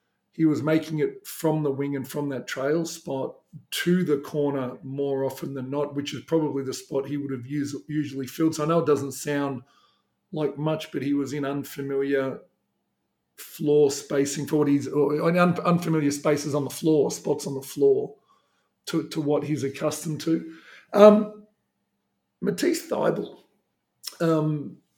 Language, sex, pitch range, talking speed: English, male, 140-160 Hz, 160 wpm